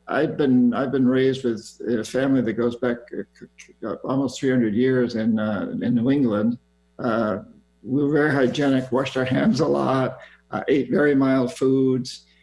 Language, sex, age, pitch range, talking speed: English, male, 60-79, 120-145 Hz, 170 wpm